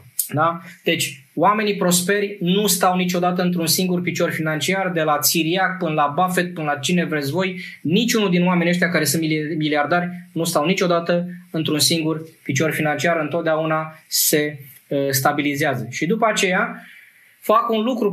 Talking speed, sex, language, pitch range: 150 wpm, male, Romanian, 155-185 Hz